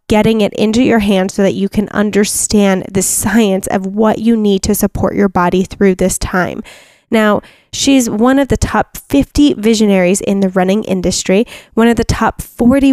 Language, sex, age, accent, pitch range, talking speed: English, female, 10-29, American, 205-240 Hz, 185 wpm